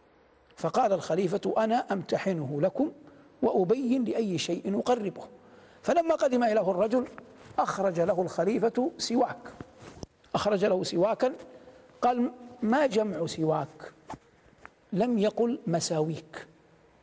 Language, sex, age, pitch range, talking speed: Arabic, male, 60-79, 180-230 Hz, 95 wpm